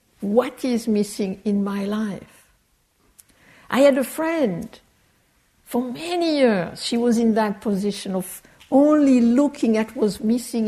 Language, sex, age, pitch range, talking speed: English, female, 60-79, 215-275 Hz, 140 wpm